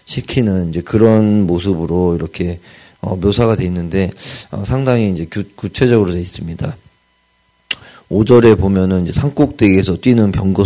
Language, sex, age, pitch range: Korean, male, 40-59, 85-105 Hz